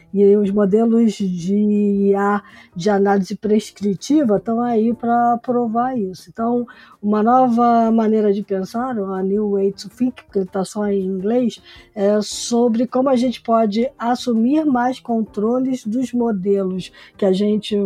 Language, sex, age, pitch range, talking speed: Portuguese, female, 20-39, 205-250 Hz, 140 wpm